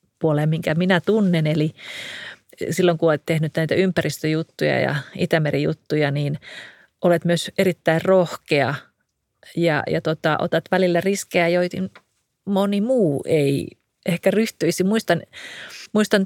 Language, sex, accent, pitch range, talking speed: Finnish, female, native, 155-190 Hz, 120 wpm